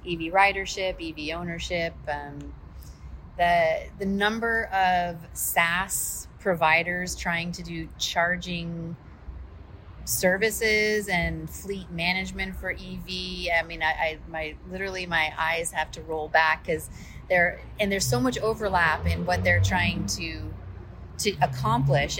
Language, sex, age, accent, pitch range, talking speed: English, female, 30-49, American, 150-180 Hz, 125 wpm